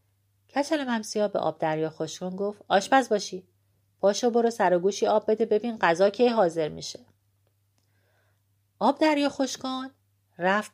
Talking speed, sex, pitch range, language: 130 wpm, female, 150-240 Hz, Persian